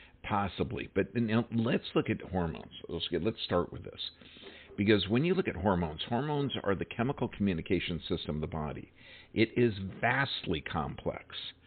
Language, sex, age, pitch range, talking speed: English, male, 50-69, 90-115 Hz, 165 wpm